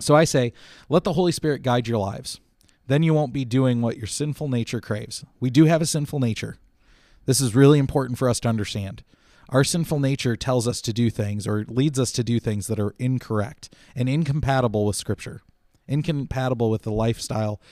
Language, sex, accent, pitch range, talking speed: English, male, American, 115-150 Hz, 200 wpm